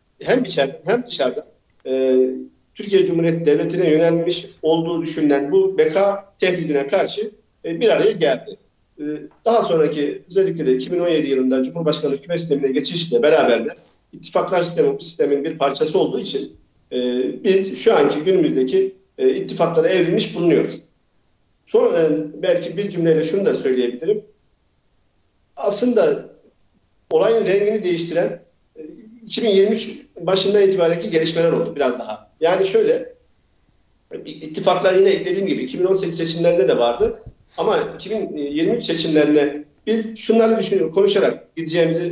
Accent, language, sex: native, Turkish, male